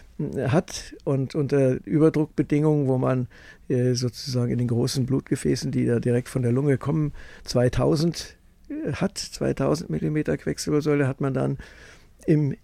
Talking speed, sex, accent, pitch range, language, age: 140 wpm, male, German, 120-145 Hz, German, 60-79